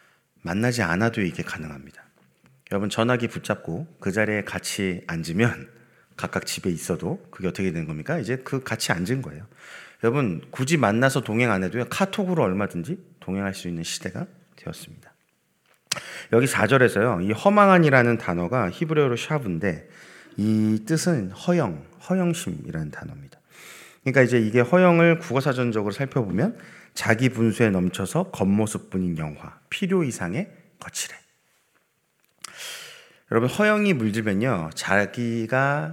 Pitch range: 100-155 Hz